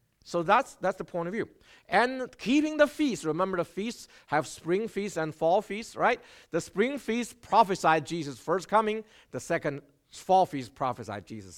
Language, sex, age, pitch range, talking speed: English, male, 50-69, 135-220 Hz, 175 wpm